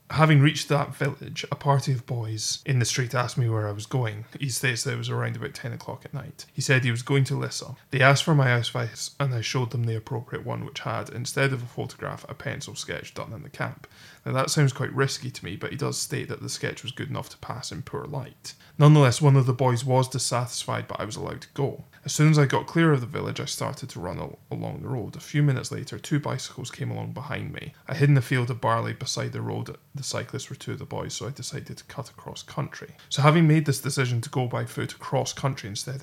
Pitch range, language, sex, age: 125-145 Hz, English, male, 20-39